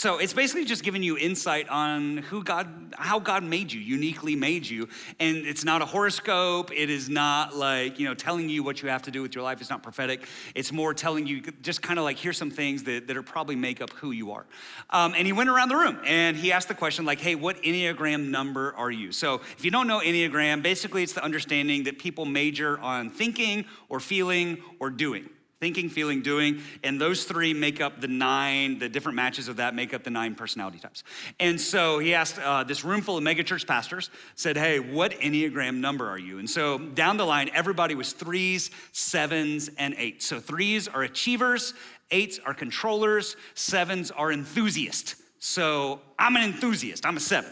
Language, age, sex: English, 30-49, male